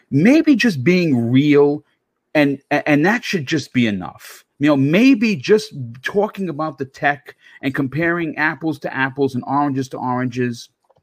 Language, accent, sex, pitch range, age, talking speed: English, American, male, 120-160 Hz, 40-59, 150 wpm